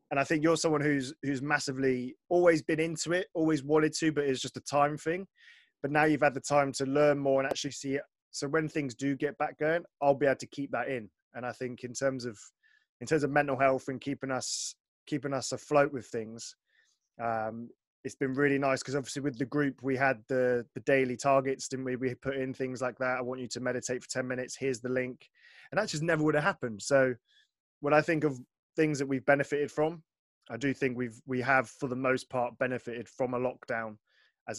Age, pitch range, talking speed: 20-39, 125-150 Hz, 230 wpm